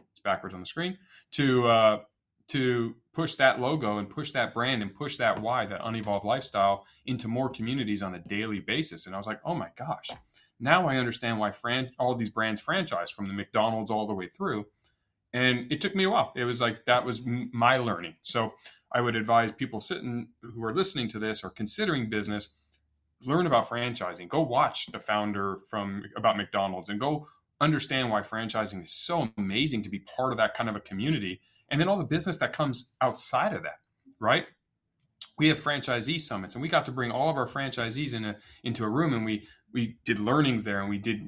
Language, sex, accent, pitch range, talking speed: English, male, American, 105-135 Hz, 210 wpm